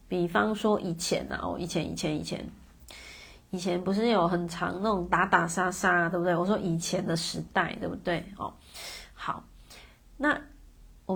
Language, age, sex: Chinese, 30-49, female